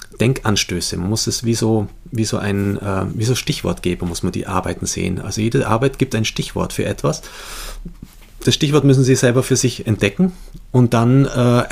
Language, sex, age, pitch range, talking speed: German, male, 40-59, 105-125 Hz, 195 wpm